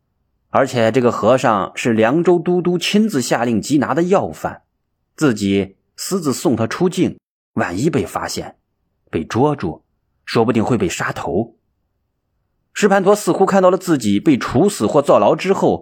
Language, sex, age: Chinese, male, 30-49